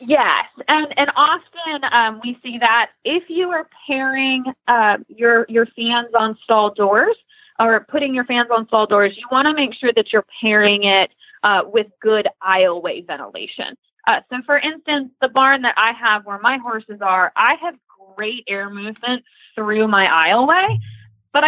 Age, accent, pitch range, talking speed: 20-39, American, 200-265 Hz, 175 wpm